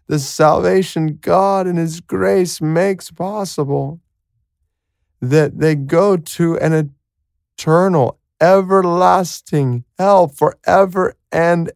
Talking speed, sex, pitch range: 90 wpm, male, 140-180 Hz